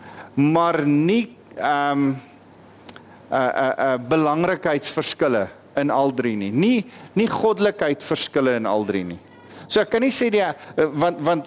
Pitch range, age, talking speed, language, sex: 150-210 Hz, 50-69, 115 wpm, English, male